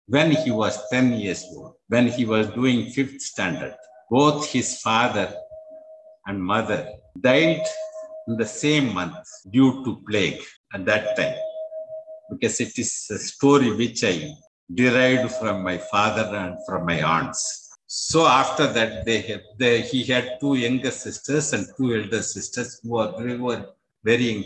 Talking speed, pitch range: 145 wpm, 110-150 Hz